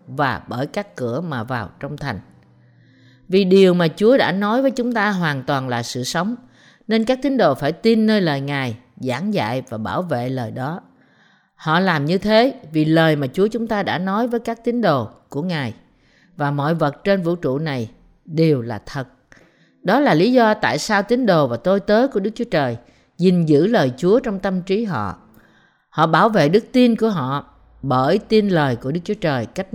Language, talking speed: Vietnamese, 210 wpm